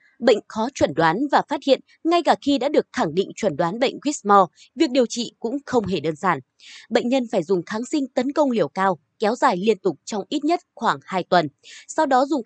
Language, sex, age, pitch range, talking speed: Vietnamese, female, 20-39, 185-275 Hz, 235 wpm